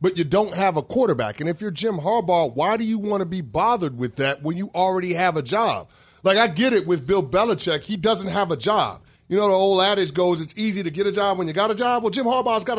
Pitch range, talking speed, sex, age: 145-200 Hz, 275 wpm, male, 30-49